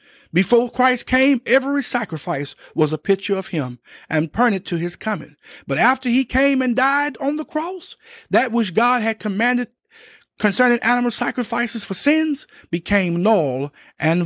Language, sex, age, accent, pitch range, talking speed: English, male, 50-69, American, 160-235 Hz, 155 wpm